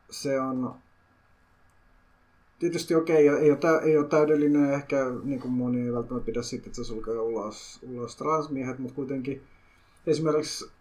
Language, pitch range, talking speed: Finnish, 115-155 Hz, 145 wpm